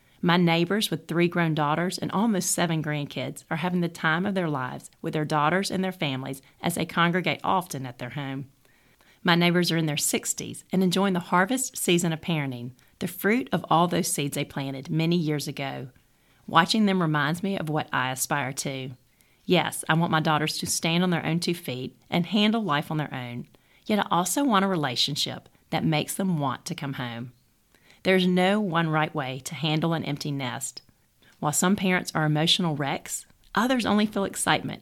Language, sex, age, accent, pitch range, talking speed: English, female, 40-59, American, 140-185 Hz, 195 wpm